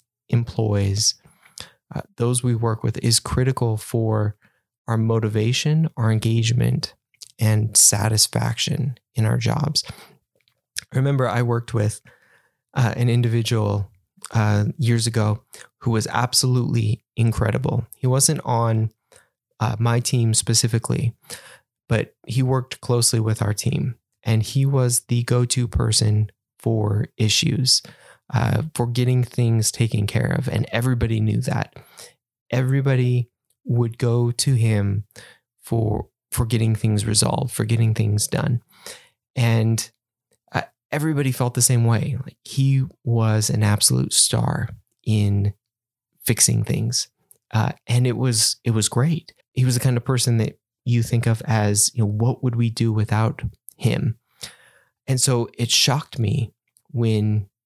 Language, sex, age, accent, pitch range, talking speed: English, male, 20-39, American, 110-125 Hz, 135 wpm